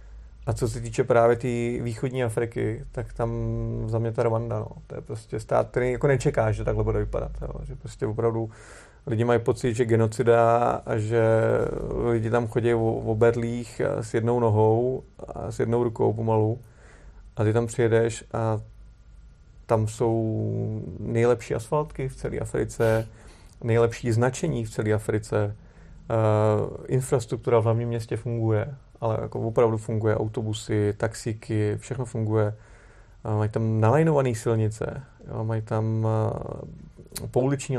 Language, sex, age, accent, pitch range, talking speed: Czech, male, 30-49, native, 110-125 Hz, 145 wpm